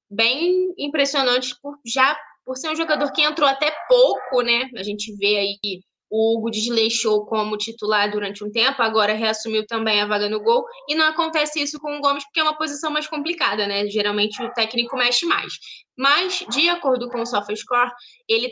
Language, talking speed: Portuguese, 190 wpm